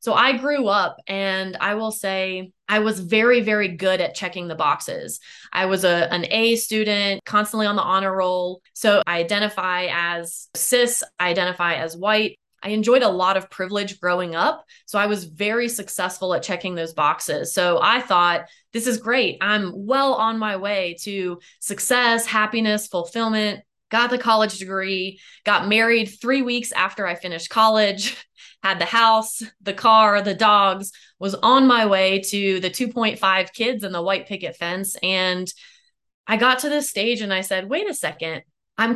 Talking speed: 175 wpm